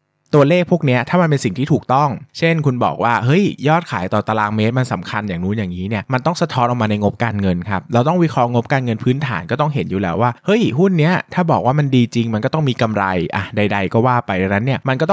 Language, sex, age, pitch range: Thai, male, 20-39, 105-135 Hz